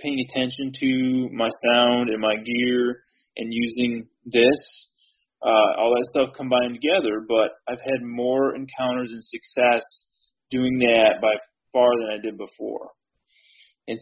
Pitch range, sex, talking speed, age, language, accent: 110-130 Hz, male, 140 wpm, 20-39, English, American